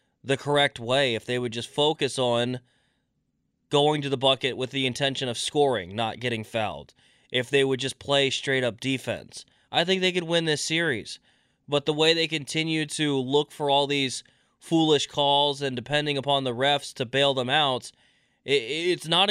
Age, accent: 20-39, American